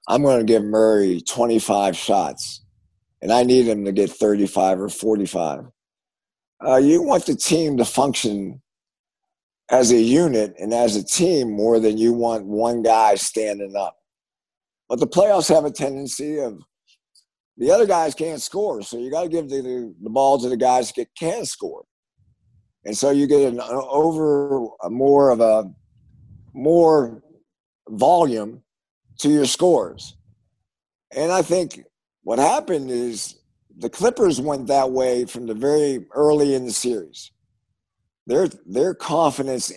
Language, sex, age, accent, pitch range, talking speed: English, male, 50-69, American, 110-145 Hz, 150 wpm